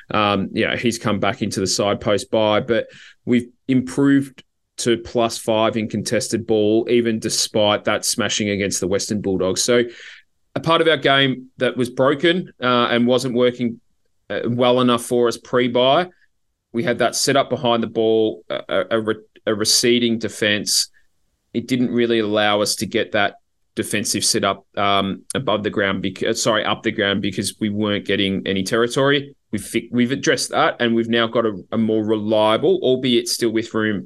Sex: male